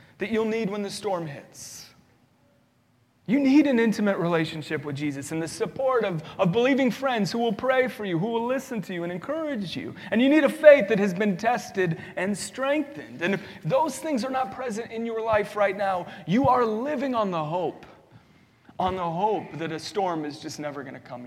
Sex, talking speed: male, 210 wpm